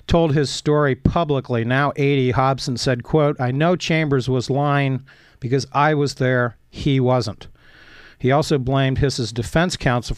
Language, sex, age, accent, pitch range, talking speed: English, male, 50-69, American, 115-140 Hz, 155 wpm